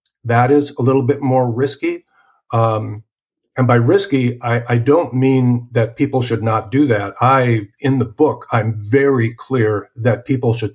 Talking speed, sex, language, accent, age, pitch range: 175 wpm, male, English, American, 50-69, 115-135 Hz